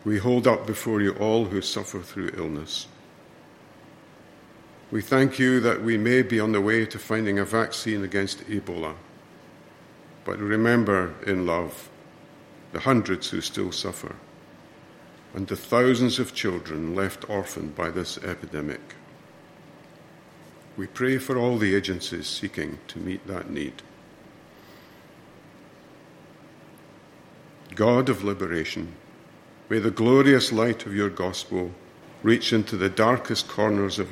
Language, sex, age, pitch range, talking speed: English, male, 50-69, 90-115 Hz, 125 wpm